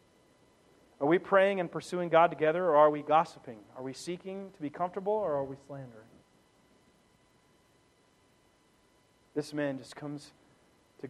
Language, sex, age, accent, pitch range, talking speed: English, male, 40-59, American, 165-210 Hz, 140 wpm